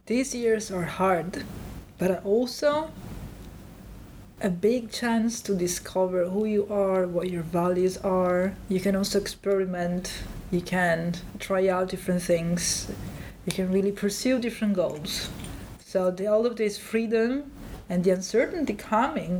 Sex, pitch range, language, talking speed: female, 185-215 Hz, Dutch, 135 wpm